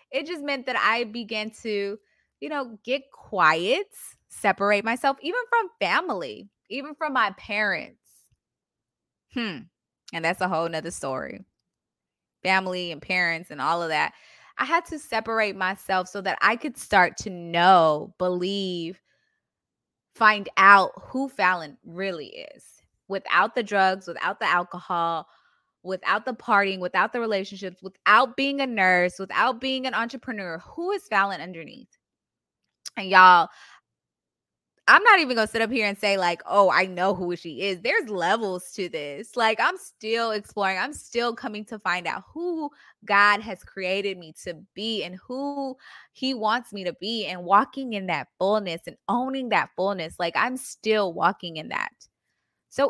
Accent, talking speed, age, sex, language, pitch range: American, 160 wpm, 20-39, female, English, 185-255 Hz